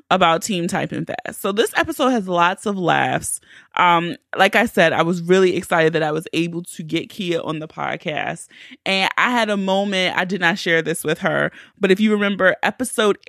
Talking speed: 210 wpm